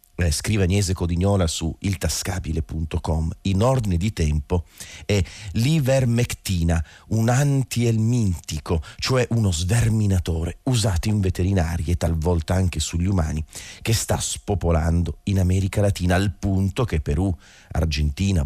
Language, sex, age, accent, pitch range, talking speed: Italian, male, 40-59, native, 85-105 Hz, 115 wpm